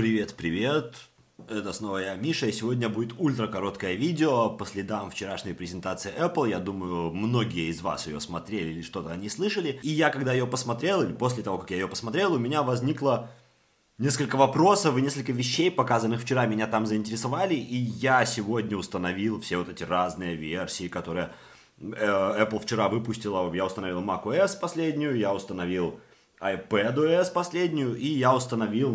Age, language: 30-49, Russian